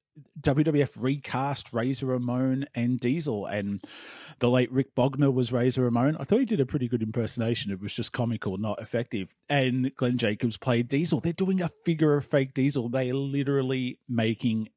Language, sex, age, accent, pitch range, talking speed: English, male, 30-49, Australian, 120-160 Hz, 175 wpm